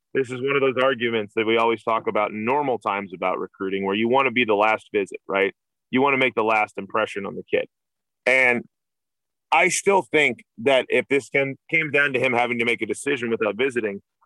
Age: 30-49